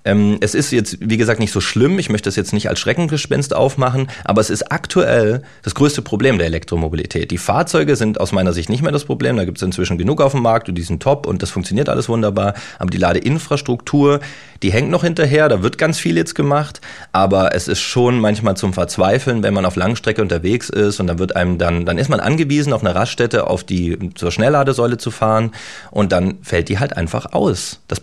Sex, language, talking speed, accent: male, German, 225 wpm, German